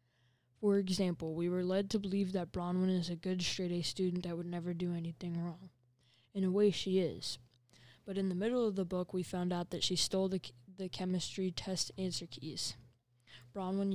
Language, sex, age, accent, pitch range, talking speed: English, female, 10-29, American, 125-185 Hz, 195 wpm